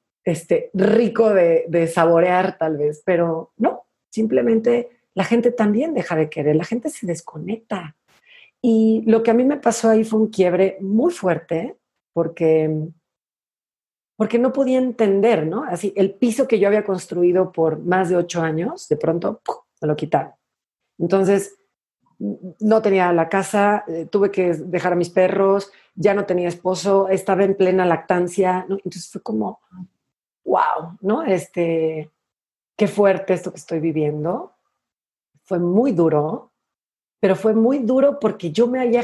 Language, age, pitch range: Spanish, 40-59, 170-220 Hz